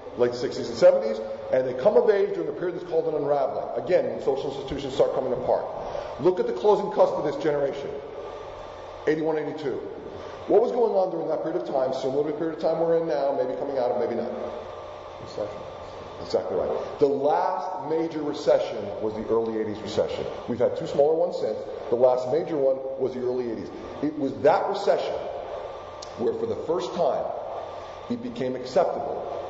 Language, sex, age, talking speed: English, male, 40-59, 185 wpm